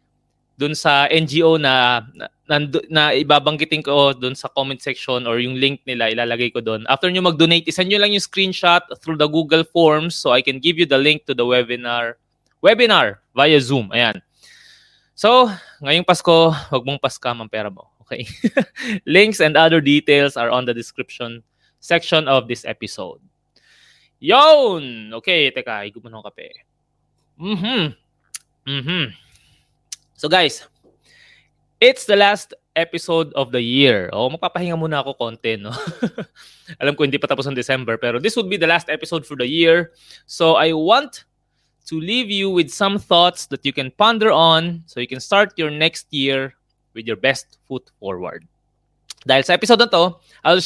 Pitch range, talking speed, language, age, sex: 130-175 Hz, 160 wpm, Filipino, 20-39, male